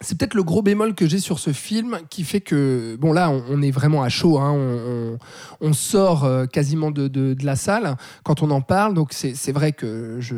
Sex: male